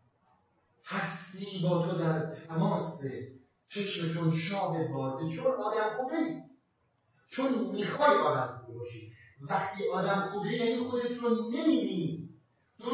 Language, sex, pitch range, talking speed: Persian, male, 150-195 Hz, 95 wpm